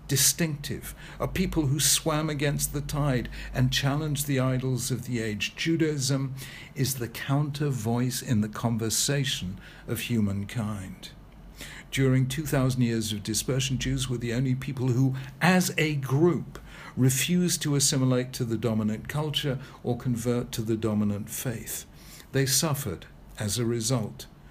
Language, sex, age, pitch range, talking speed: English, male, 60-79, 115-140 Hz, 140 wpm